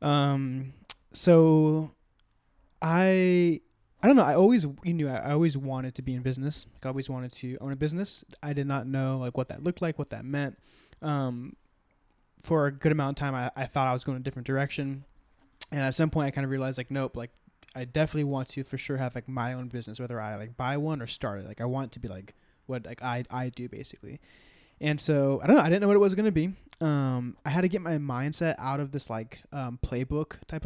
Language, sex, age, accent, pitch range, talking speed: English, male, 20-39, American, 125-155 Hz, 245 wpm